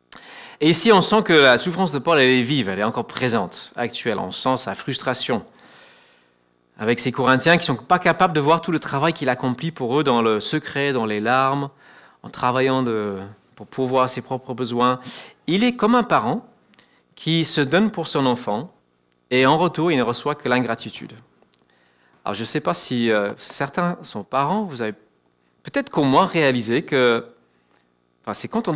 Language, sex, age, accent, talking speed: French, male, 40-59, French, 190 wpm